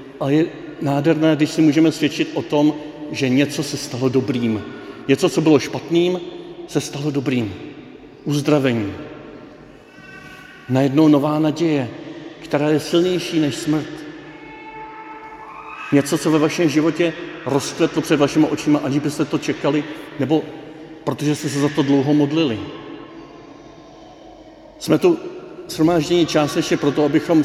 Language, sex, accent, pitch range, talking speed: Czech, male, native, 145-165 Hz, 130 wpm